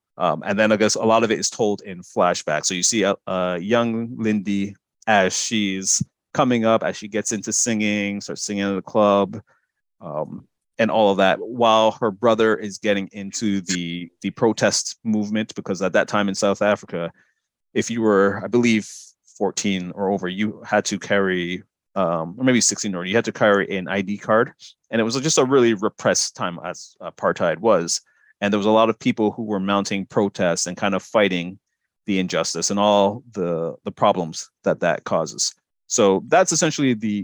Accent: American